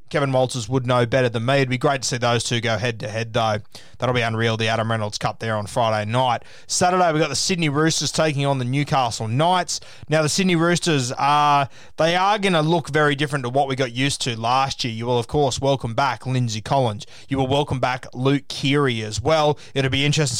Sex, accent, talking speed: male, Australian, 230 wpm